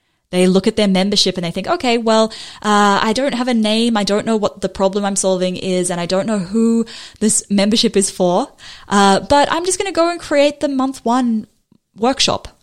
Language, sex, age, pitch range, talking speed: English, female, 10-29, 175-220 Hz, 225 wpm